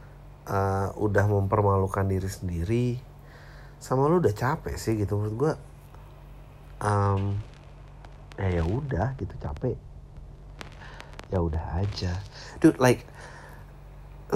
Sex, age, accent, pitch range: male, 30-49, native, 95-120 Hz